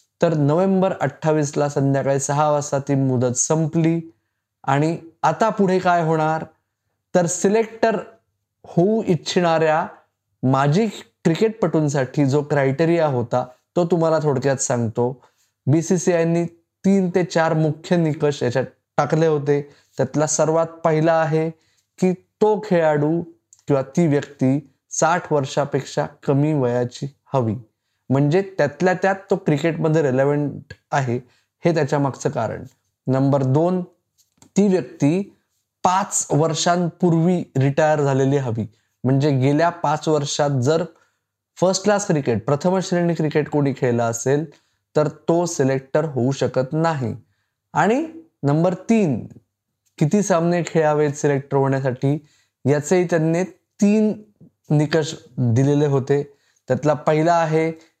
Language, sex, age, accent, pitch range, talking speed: Marathi, male, 20-39, native, 135-170 Hz, 80 wpm